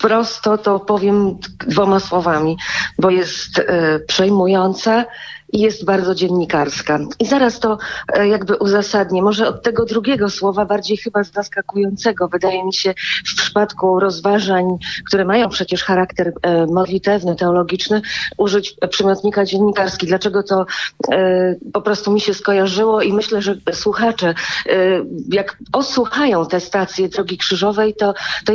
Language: Polish